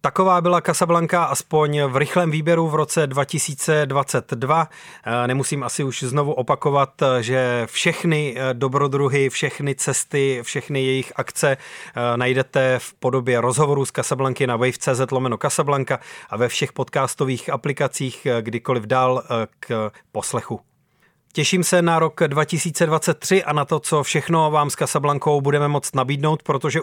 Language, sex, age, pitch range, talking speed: Czech, male, 30-49, 130-150 Hz, 130 wpm